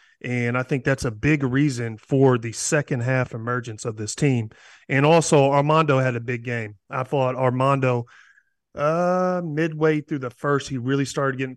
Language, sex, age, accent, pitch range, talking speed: English, male, 30-49, American, 130-150 Hz, 175 wpm